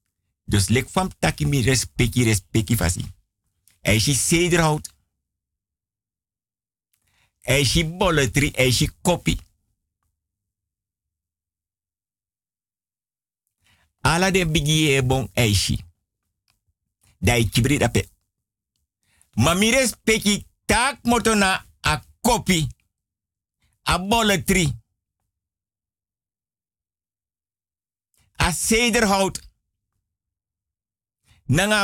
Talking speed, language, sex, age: 75 wpm, Dutch, male, 50-69